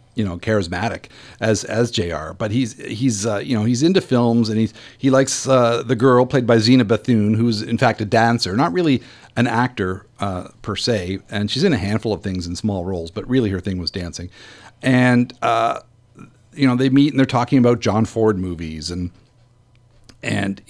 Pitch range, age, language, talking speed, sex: 100-125 Hz, 50-69, English, 200 wpm, male